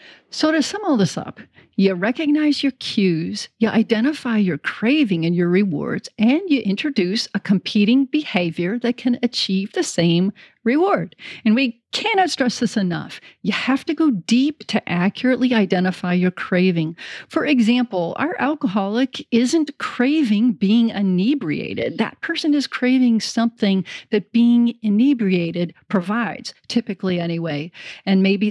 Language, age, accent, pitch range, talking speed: English, 40-59, American, 200-275 Hz, 140 wpm